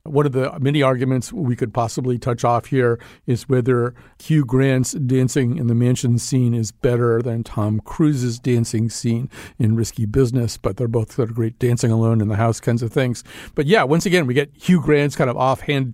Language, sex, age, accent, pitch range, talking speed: English, male, 50-69, American, 125-165 Hz, 205 wpm